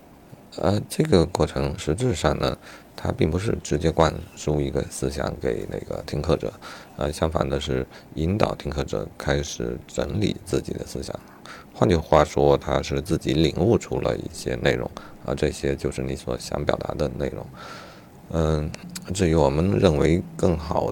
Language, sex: Chinese, male